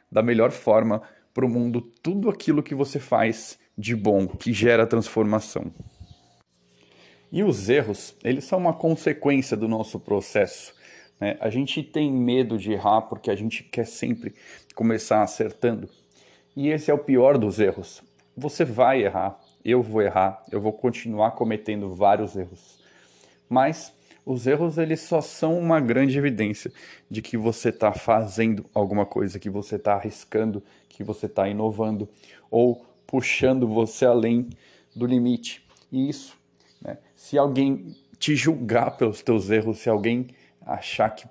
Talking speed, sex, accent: 150 wpm, male, Brazilian